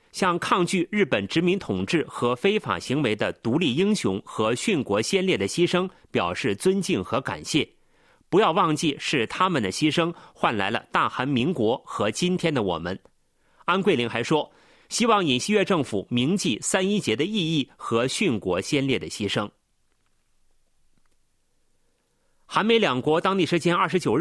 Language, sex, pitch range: Chinese, male, 145-195 Hz